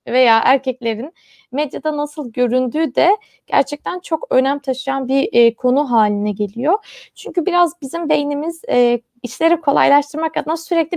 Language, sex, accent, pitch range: Turkish, female, native, 235-290 Hz